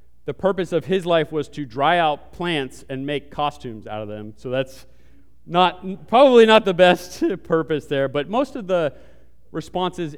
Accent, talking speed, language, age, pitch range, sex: American, 175 wpm, English, 30-49, 115-160 Hz, male